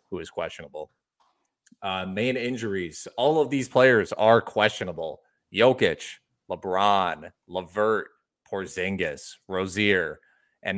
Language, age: English, 20-39